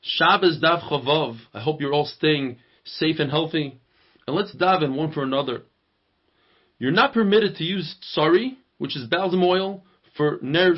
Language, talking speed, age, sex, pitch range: English, 165 wpm, 30-49, male, 150-190 Hz